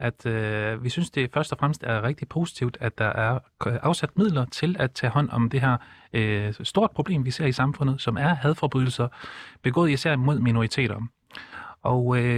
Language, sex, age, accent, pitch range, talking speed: Danish, male, 30-49, native, 120-150 Hz, 185 wpm